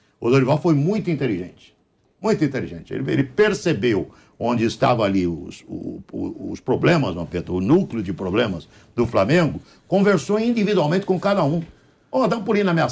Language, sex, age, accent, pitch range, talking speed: Portuguese, male, 60-79, Brazilian, 130-175 Hz, 155 wpm